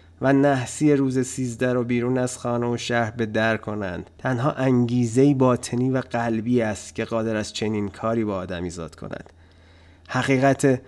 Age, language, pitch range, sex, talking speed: 30-49, Persian, 105-135 Hz, male, 165 wpm